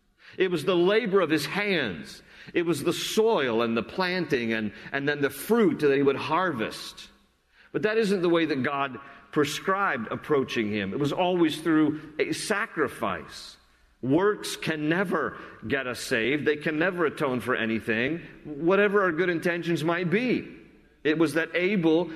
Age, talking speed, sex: 40-59, 165 wpm, male